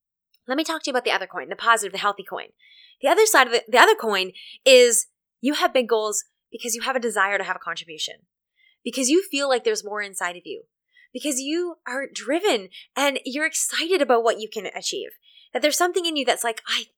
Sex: female